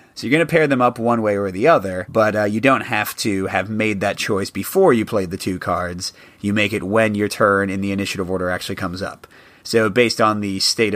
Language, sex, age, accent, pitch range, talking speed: English, male, 30-49, American, 100-120 Hz, 250 wpm